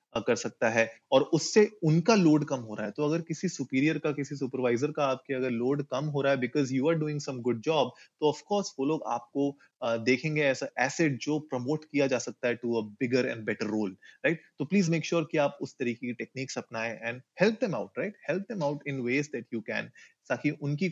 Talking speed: 70 wpm